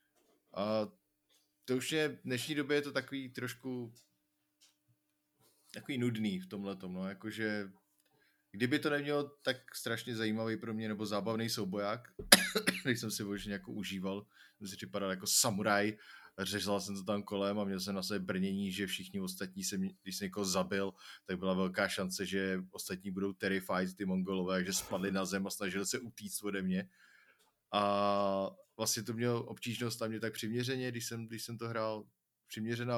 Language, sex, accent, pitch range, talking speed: Czech, male, native, 95-115 Hz, 170 wpm